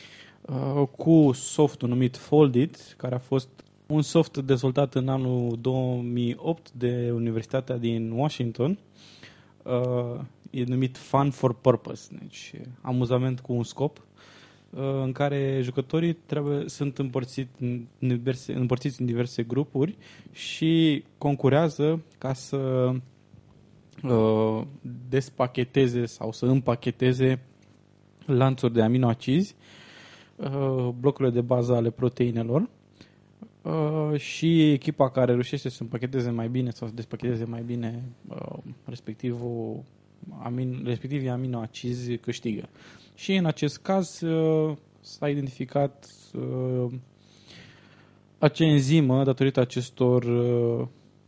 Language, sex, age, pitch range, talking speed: Romanian, male, 20-39, 120-145 Hz, 100 wpm